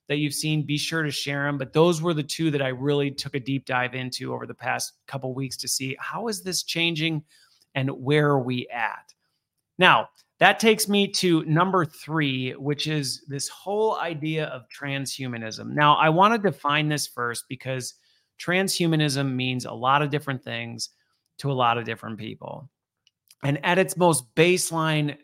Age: 30-49